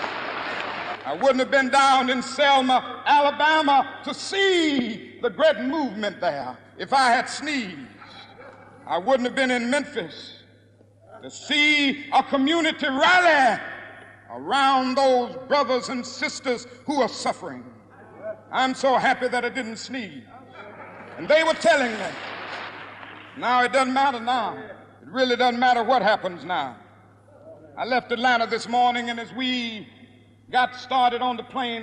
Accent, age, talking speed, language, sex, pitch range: American, 60-79, 140 wpm, English, male, 225-265 Hz